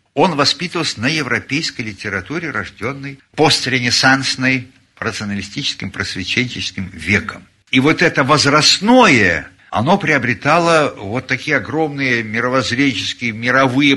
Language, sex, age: Russian, male, 60-79